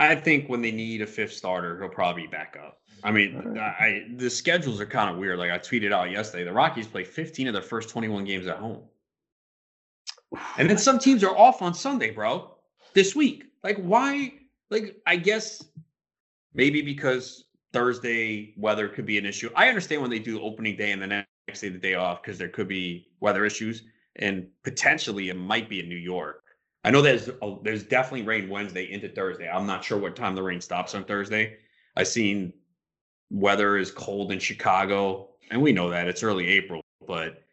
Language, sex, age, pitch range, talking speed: English, male, 30-49, 95-125 Hz, 200 wpm